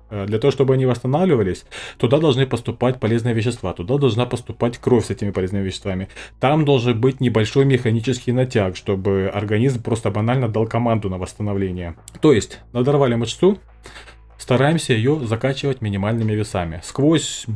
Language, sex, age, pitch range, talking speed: Russian, male, 20-39, 105-130 Hz, 145 wpm